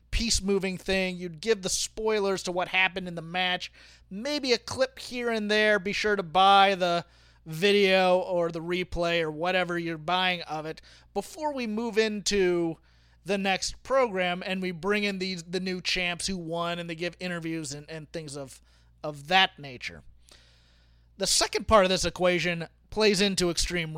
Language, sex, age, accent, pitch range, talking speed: English, male, 30-49, American, 120-195 Hz, 180 wpm